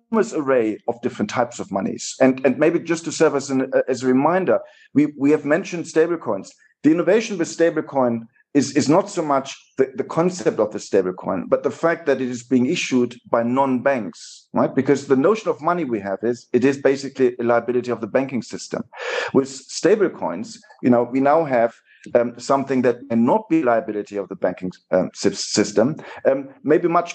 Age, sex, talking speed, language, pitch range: 50-69, male, 200 wpm, English, 125-170 Hz